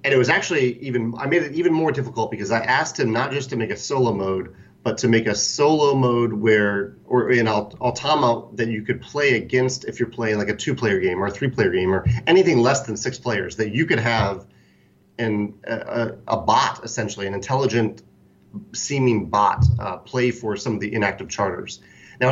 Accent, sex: American, male